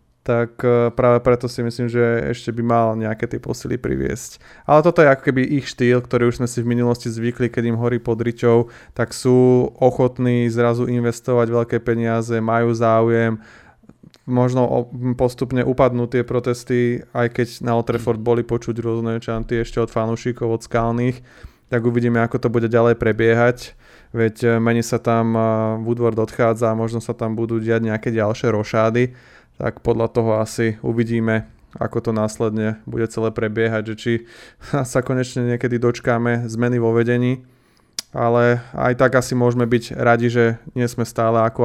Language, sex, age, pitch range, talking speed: Slovak, male, 20-39, 115-120 Hz, 165 wpm